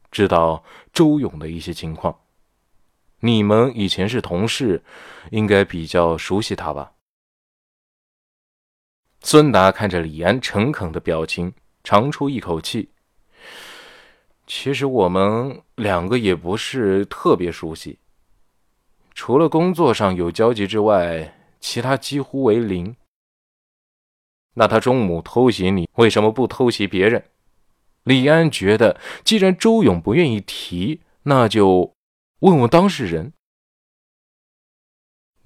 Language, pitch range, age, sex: Chinese, 90-130 Hz, 20-39, male